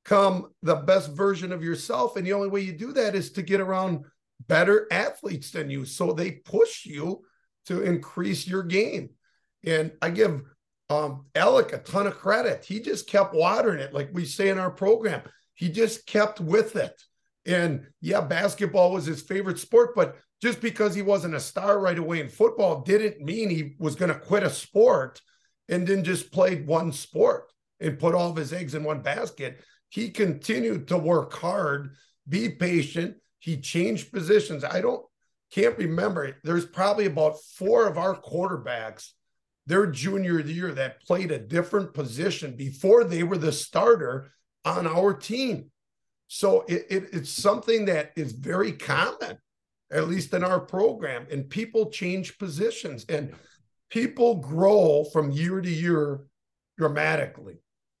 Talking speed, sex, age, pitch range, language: 165 wpm, male, 50-69, 160-205 Hz, English